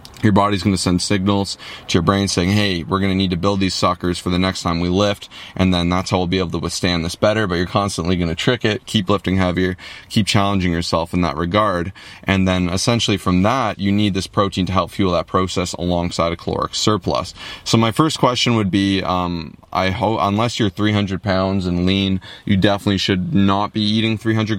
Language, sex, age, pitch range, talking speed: English, male, 20-39, 90-105 Hz, 225 wpm